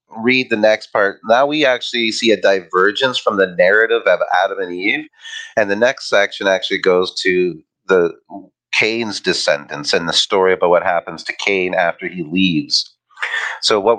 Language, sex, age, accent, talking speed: English, male, 30-49, American, 170 wpm